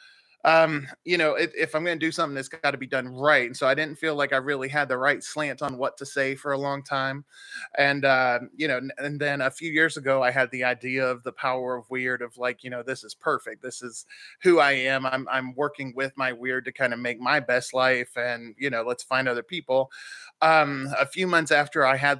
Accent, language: American, English